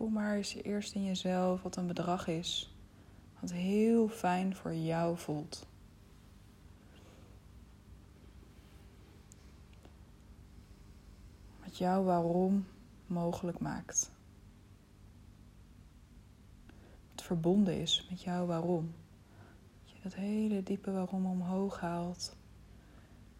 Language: Dutch